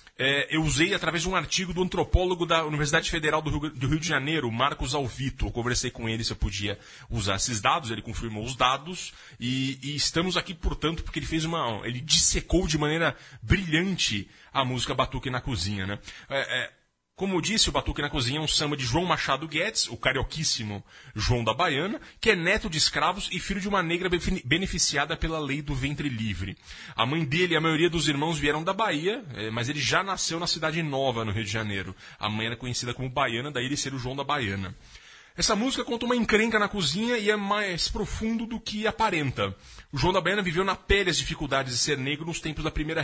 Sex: male